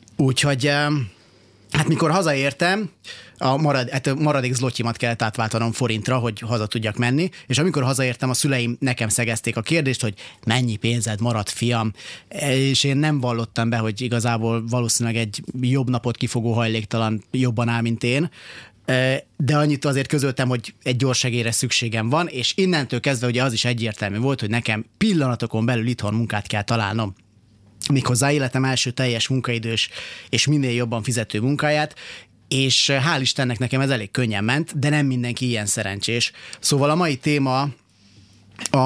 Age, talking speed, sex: 30-49, 150 wpm, male